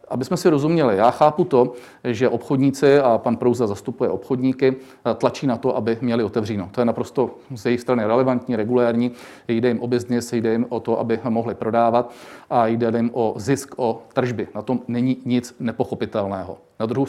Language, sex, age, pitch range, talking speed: Czech, male, 40-59, 115-135 Hz, 185 wpm